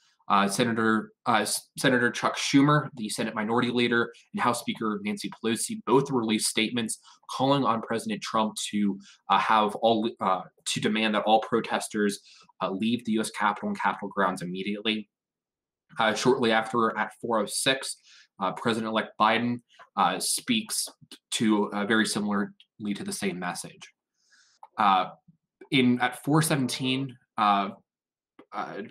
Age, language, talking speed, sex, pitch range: 20-39, English, 135 wpm, male, 105-125 Hz